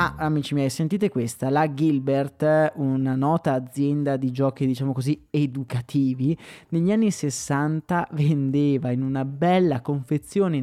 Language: Italian